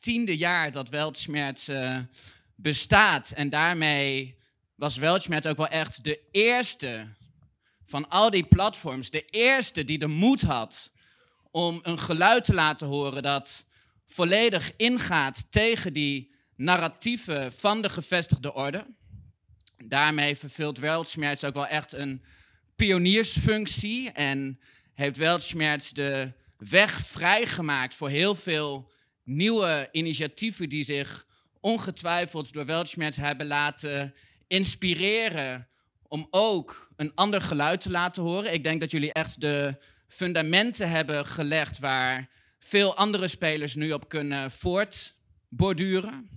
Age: 20-39